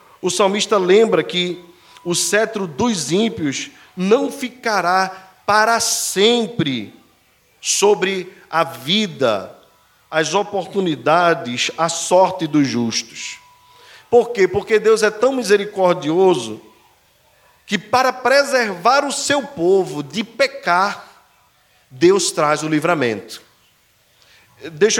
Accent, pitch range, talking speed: Brazilian, 175-230 Hz, 100 wpm